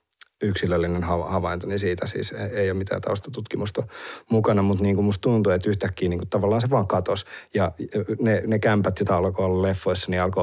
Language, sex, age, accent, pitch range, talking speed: Finnish, male, 30-49, native, 95-115 Hz, 185 wpm